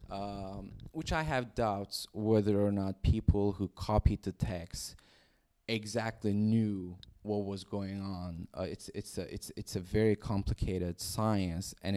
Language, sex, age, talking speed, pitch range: English, male, 20-39, 145 wpm, 95-110 Hz